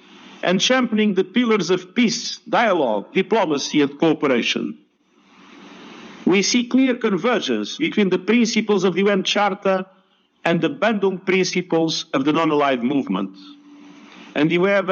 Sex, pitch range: male, 175-230 Hz